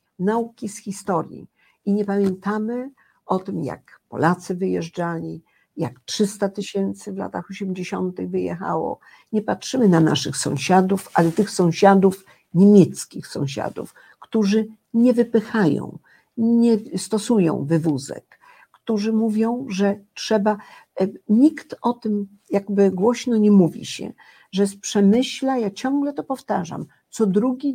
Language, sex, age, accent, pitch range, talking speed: Polish, female, 50-69, native, 180-225 Hz, 115 wpm